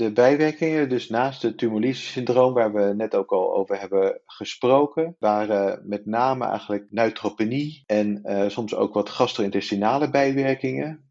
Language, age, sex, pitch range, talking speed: English, 40-59, male, 105-130 Hz, 140 wpm